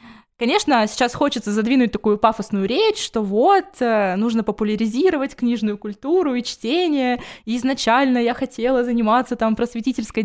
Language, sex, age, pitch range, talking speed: Russian, female, 20-39, 205-250 Hz, 125 wpm